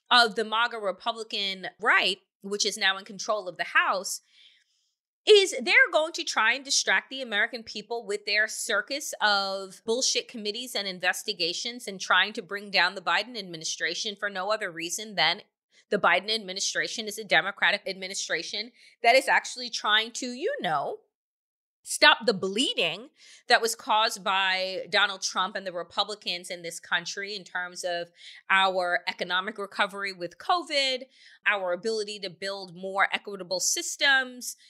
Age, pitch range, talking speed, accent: 30-49, 195-265 Hz, 150 wpm, American